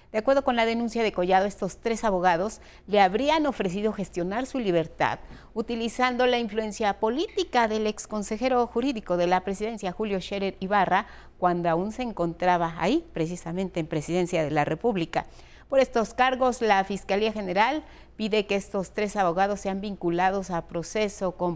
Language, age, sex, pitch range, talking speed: Spanish, 40-59, female, 175-230 Hz, 155 wpm